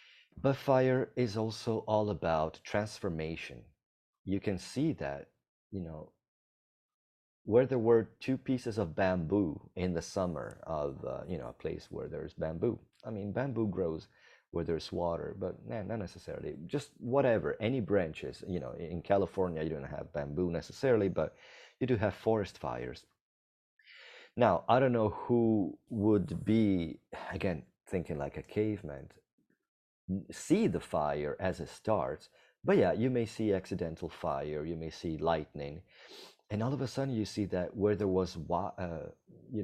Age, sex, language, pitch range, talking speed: 30-49, male, English, 80-110 Hz, 155 wpm